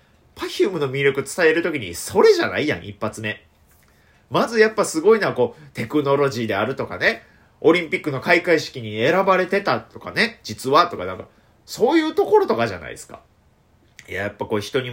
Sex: male